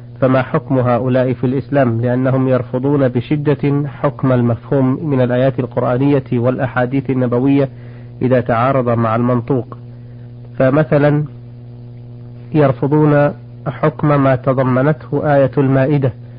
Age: 40-59